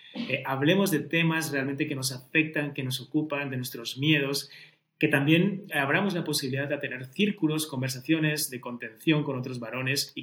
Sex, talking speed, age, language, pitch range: male, 170 wpm, 30-49, Spanish, 125-155 Hz